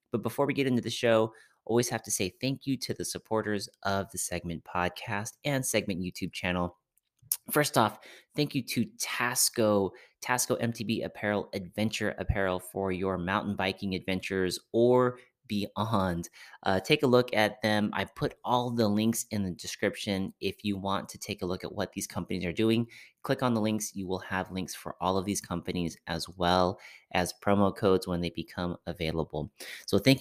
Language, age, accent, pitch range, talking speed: English, 30-49, American, 90-110 Hz, 185 wpm